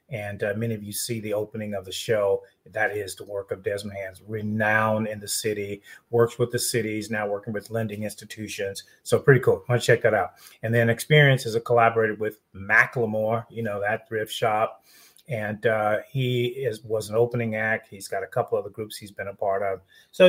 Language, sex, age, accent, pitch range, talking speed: English, male, 30-49, American, 105-130 Hz, 215 wpm